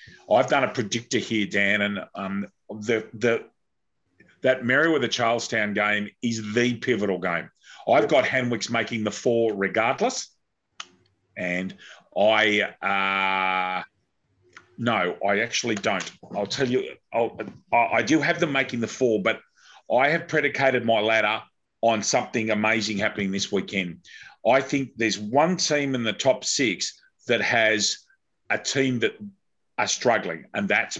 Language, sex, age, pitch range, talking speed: English, male, 40-59, 105-130 Hz, 145 wpm